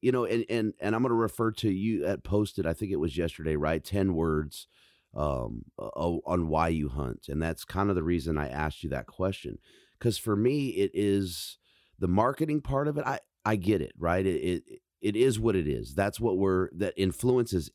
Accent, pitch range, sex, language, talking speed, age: American, 85-110 Hz, male, English, 215 wpm, 30-49